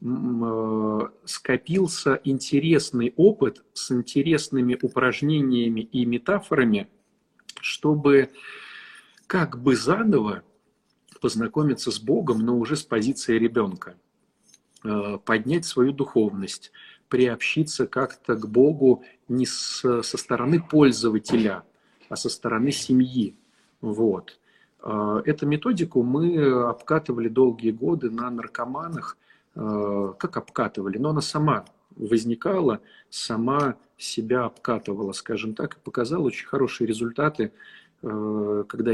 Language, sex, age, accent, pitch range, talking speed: Russian, male, 40-59, native, 110-145 Hz, 95 wpm